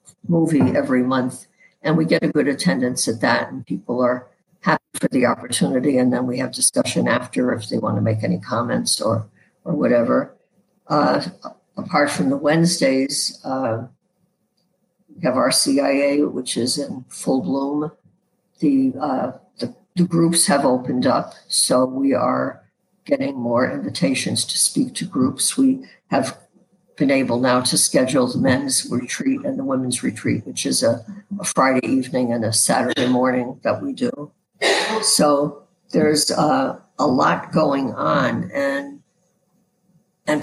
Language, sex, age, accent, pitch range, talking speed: English, female, 60-79, American, 130-185 Hz, 155 wpm